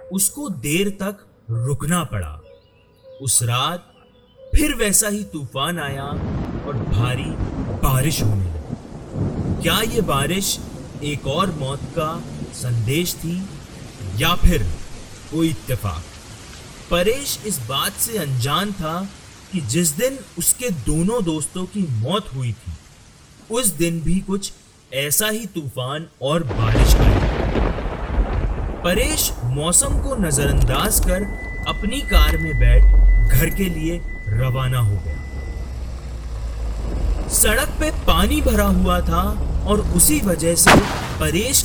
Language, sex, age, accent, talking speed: Hindi, male, 30-49, native, 115 wpm